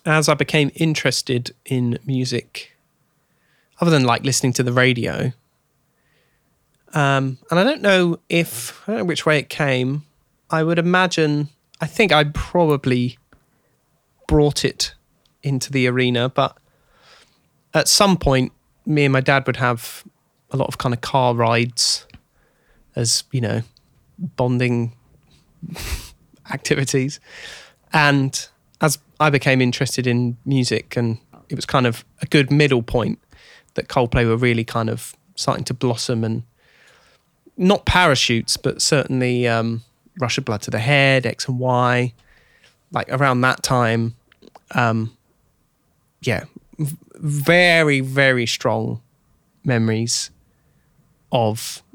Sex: male